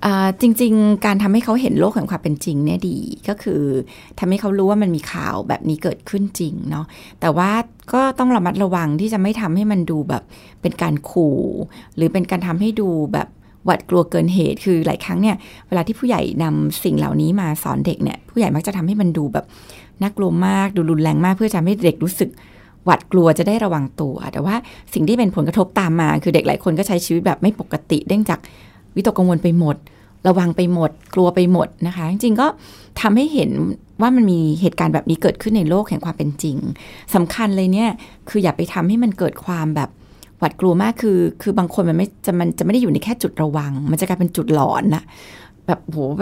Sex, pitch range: female, 160-205 Hz